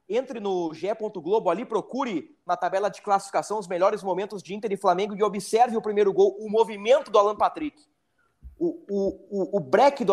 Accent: Brazilian